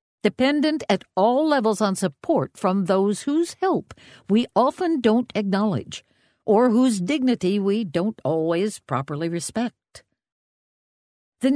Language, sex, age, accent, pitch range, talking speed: English, female, 60-79, American, 170-250 Hz, 120 wpm